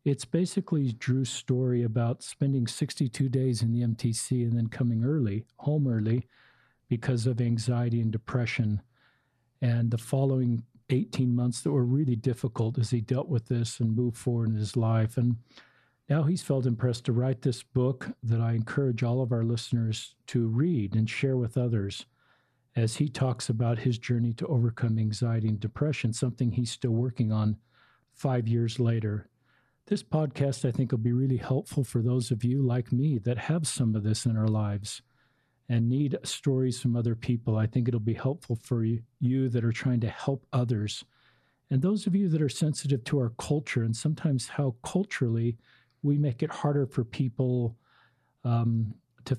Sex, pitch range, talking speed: male, 115-135 Hz, 175 wpm